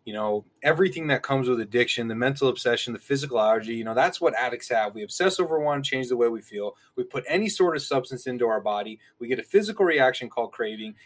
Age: 20-39